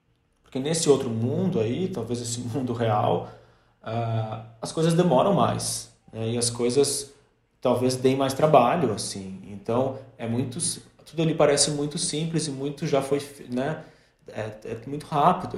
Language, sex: Portuguese, male